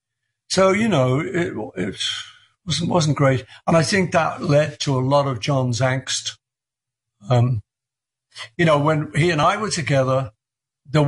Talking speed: 155 wpm